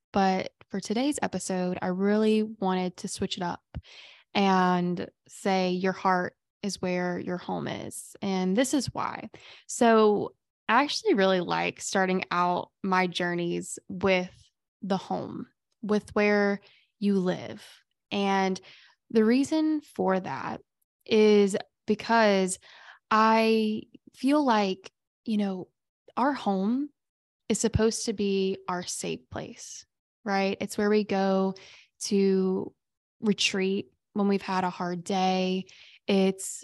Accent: American